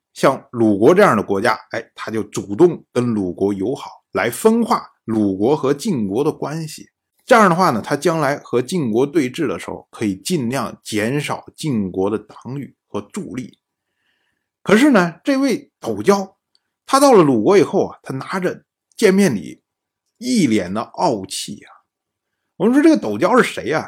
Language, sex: Chinese, male